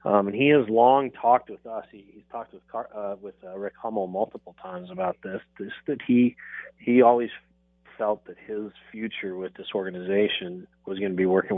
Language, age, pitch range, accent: English, 30-49, 95-110 Hz, American